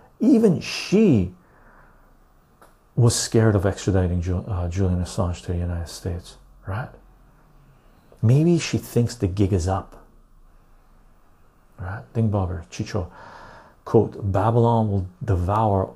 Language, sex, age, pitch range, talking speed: English, male, 40-59, 95-120 Hz, 100 wpm